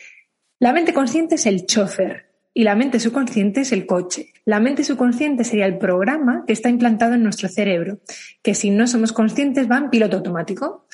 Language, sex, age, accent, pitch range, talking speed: Spanish, female, 20-39, Spanish, 205-265 Hz, 185 wpm